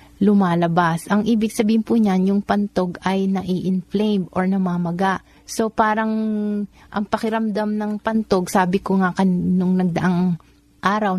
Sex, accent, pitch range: female, native, 175-200 Hz